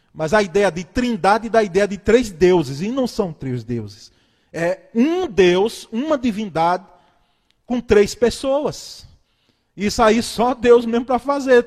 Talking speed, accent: 155 wpm, Brazilian